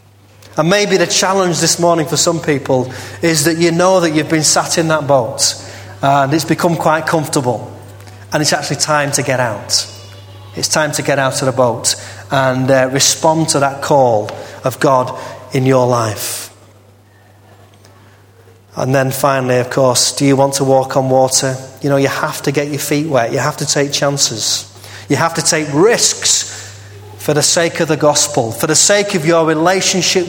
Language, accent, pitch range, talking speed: English, British, 110-155 Hz, 185 wpm